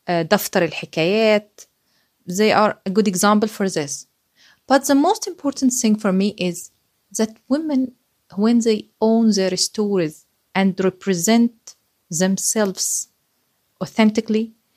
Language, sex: German, female